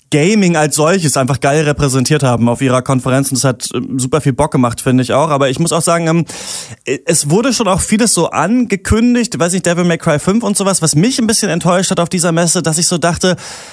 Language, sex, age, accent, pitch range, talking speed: German, male, 30-49, German, 145-185 Hz, 230 wpm